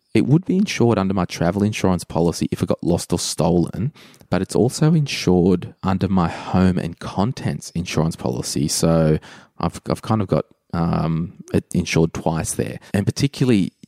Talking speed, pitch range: 170 wpm, 85-110 Hz